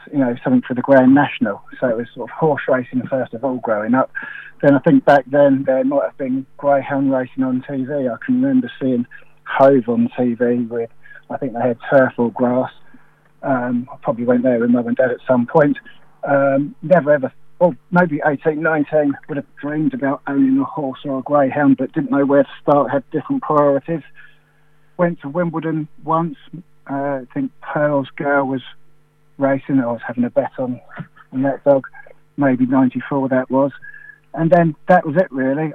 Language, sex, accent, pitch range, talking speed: English, male, British, 130-155 Hz, 195 wpm